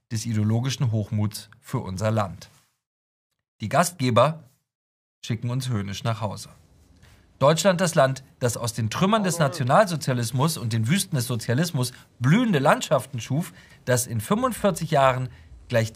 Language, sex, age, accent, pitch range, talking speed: German, male, 40-59, German, 110-145 Hz, 130 wpm